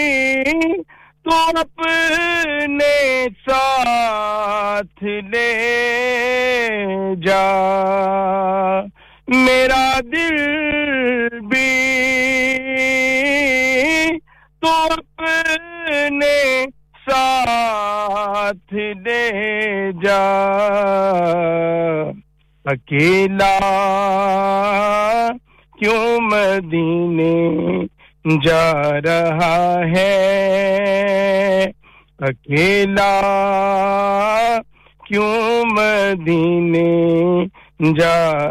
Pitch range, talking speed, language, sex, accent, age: 195-265 Hz, 35 wpm, English, male, Indian, 50-69